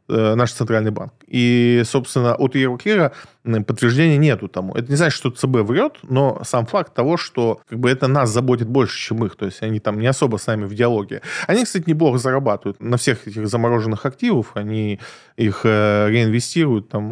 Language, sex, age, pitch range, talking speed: Russian, male, 20-39, 110-135 Hz, 170 wpm